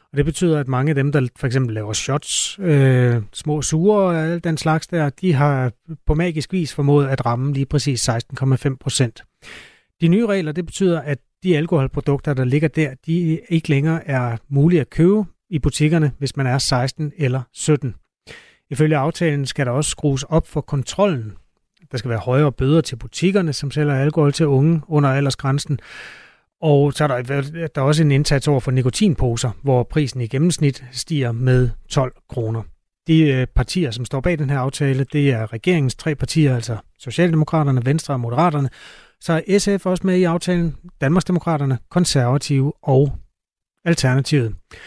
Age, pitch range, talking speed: 30-49, 135-165 Hz, 175 wpm